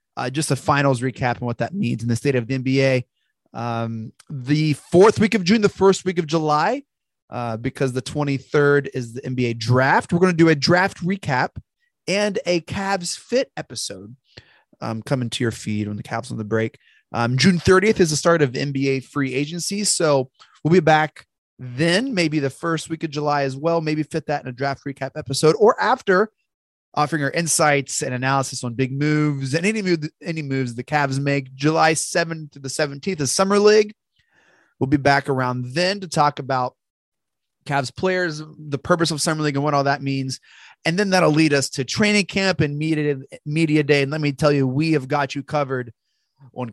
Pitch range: 130-170 Hz